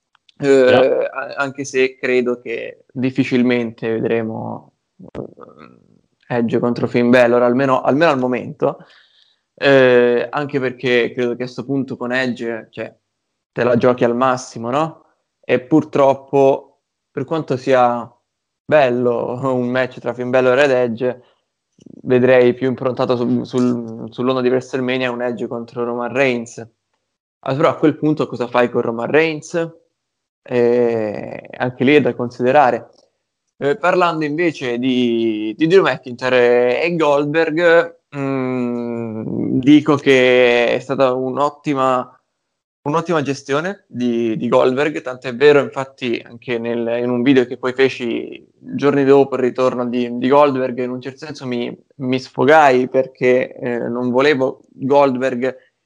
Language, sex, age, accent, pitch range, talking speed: Italian, male, 20-39, native, 120-140 Hz, 135 wpm